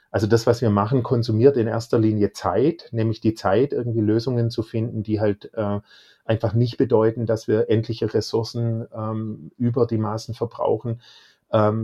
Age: 40-59